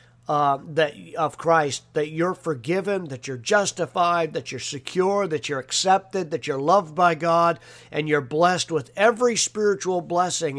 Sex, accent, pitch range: male, American, 140-170 Hz